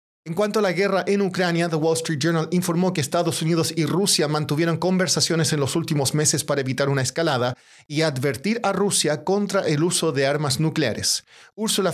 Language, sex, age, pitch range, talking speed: Spanish, male, 40-59, 140-170 Hz, 190 wpm